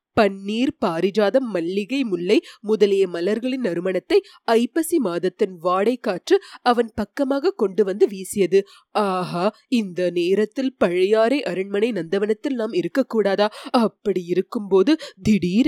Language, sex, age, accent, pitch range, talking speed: Tamil, female, 20-39, native, 195-265 Hz, 105 wpm